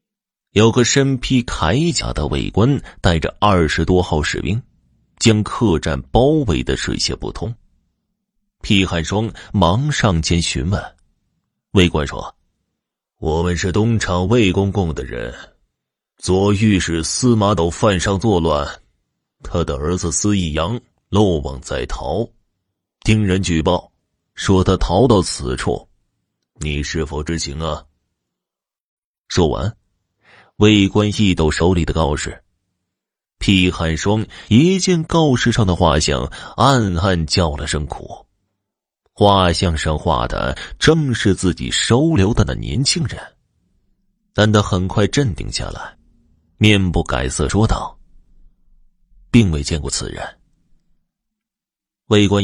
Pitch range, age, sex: 80-115 Hz, 30-49, male